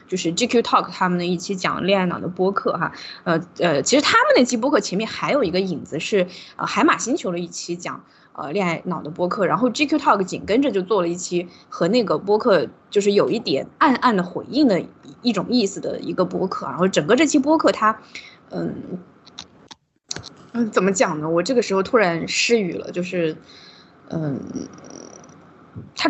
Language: Chinese